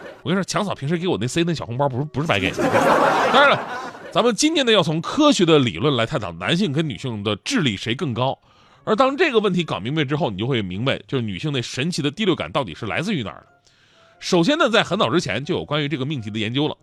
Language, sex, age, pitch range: Chinese, male, 30-49, 120-175 Hz